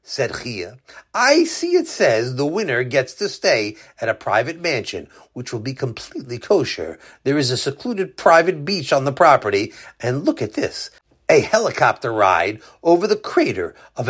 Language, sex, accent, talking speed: English, male, American, 170 wpm